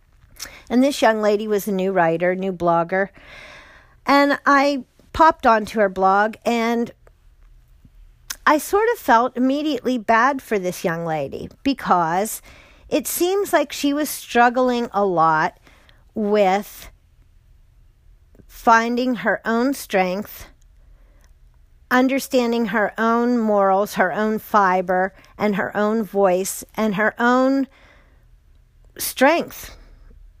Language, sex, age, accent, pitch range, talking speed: English, female, 50-69, American, 185-240 Hz, 110 wpm